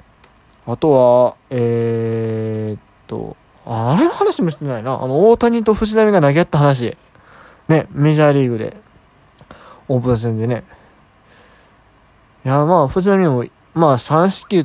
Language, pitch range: Japanese, 115-155 Hz